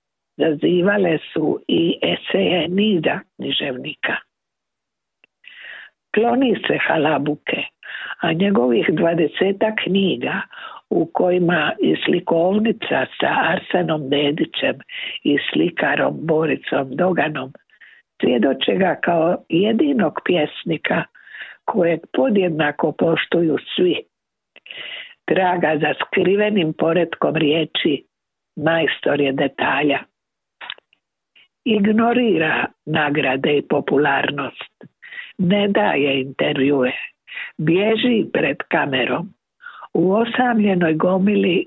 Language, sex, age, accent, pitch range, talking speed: Croatian, female, 60-79, native, 160-215 Hz, 75 wpm